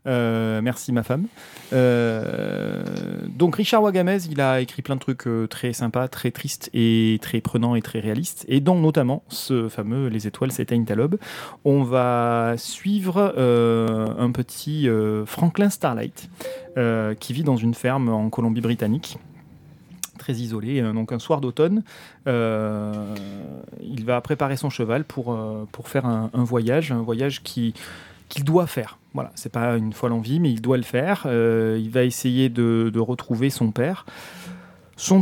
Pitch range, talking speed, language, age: 115-140 Hz, 165 wpm, French, 30-49